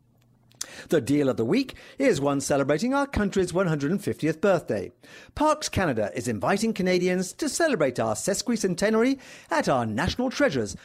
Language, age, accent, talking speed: English, 50-69, British, 140 wpm